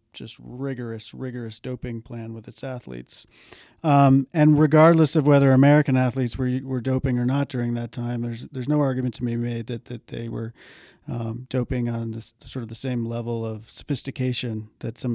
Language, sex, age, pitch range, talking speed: English, male, 40-59, 115-140 Hz, 180 wpm